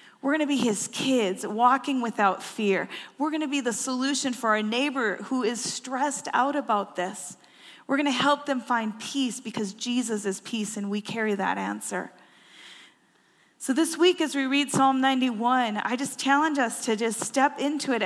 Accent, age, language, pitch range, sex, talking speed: American, 30-49, English, 210-270 Hz, female, 190 wpm